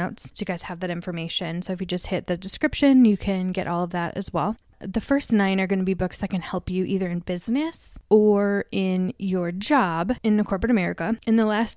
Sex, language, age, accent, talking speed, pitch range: female, English, 20-39, American, 240 wpm, 180-220 Hz